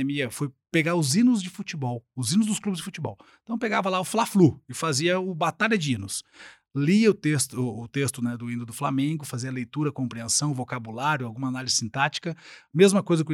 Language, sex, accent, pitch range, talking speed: Portuguese, male, Brazilian, 130-185 Hz, 200 wpm